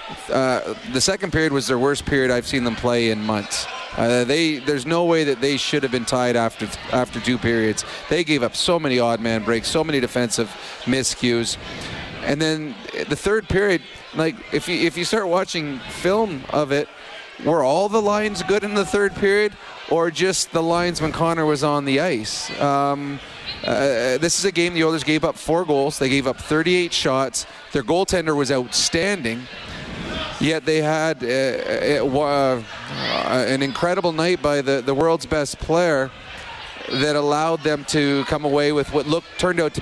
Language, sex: English, male